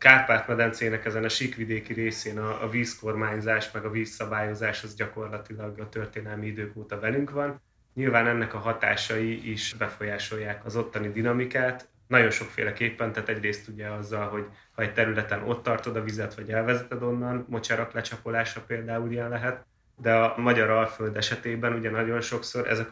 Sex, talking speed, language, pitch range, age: male, 155 wpm, Hungarian, 110-115 Hz, 30-49